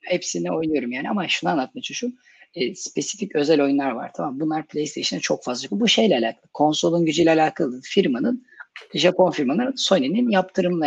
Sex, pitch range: female, 145-215 Hz